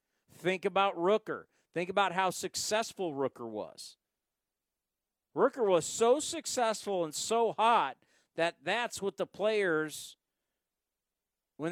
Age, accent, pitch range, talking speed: 50-69, American, 160-220 Hz, 115 wpm